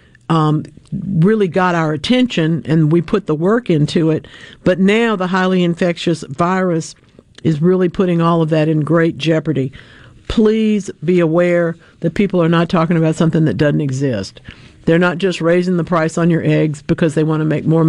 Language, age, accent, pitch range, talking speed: English, 50-69, American, 160-205 Hz, 185 wpm